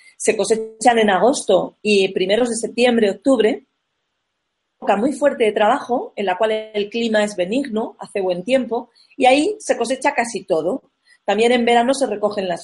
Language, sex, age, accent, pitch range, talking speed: Spanish, female, 40-59, Spanish, 195-250 Hz, 170 wpm